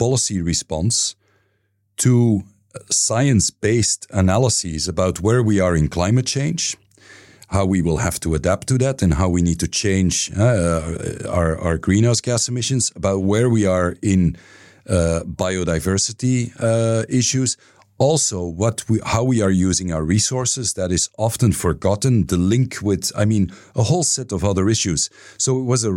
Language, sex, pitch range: Danish, male, 90-120 Hz